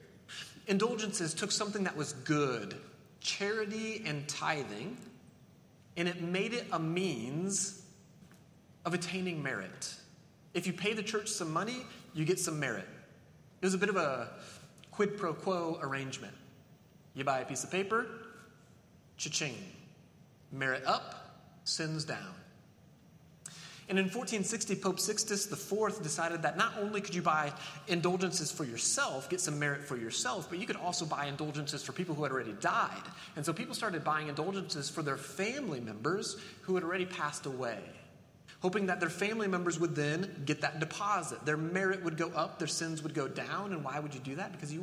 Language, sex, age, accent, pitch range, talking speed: English, male, 30-49, American, 150-195 Hz, 170 wpm